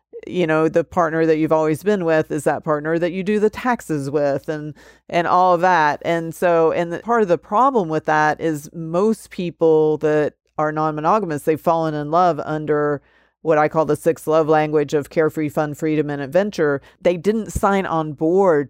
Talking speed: 200 wpm